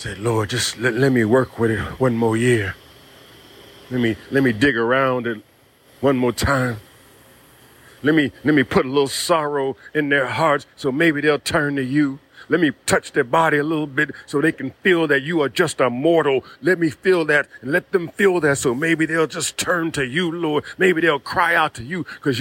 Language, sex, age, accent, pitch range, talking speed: English, male, 50-69, American, 130-170 Hz, 215 wpm